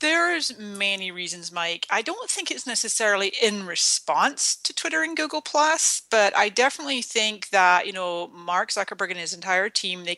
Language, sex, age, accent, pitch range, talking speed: English, female, 40-59, American, 180-245 Hz, 170 wpm